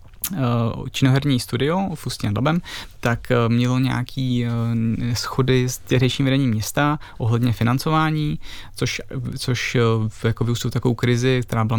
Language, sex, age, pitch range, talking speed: Czech, male, 20-39, 115-130 Hz, 110 wpm